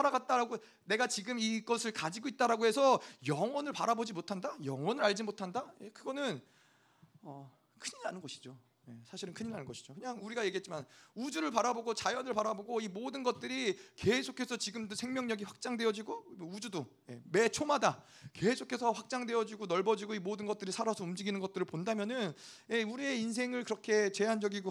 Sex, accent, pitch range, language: male, native, 190-250 Hz, Korean